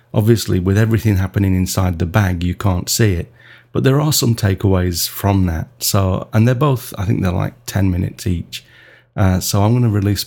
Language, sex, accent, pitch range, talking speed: English, male, British, 95-120 Hz, 205 wpm